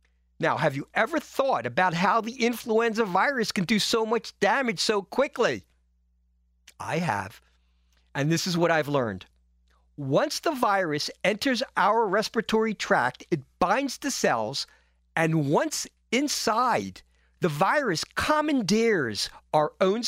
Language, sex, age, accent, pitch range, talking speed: English, male, 50-69, American, 145-225 Hz, 130 wpm